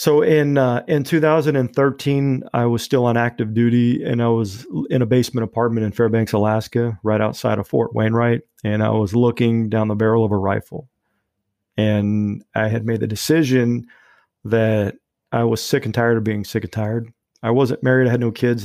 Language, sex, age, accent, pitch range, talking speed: English, male, 40-59, American, 110-120 Hz, 195 wpm